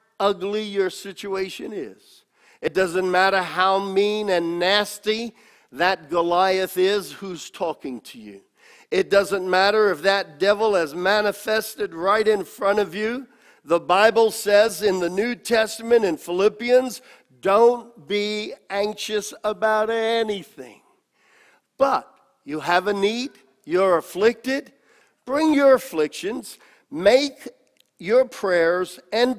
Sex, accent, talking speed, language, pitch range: male, American, 120 wpm, English, 180-225 Hz